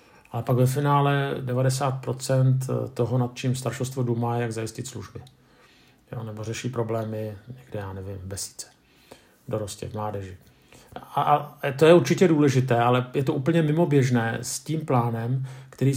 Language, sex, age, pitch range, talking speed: Czech, male, 50-69, 120-135 Hz, 150 wpm